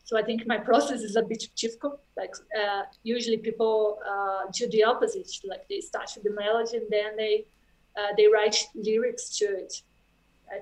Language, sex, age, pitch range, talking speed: English, female, 20-39, 205-240 Hz, 185 wpm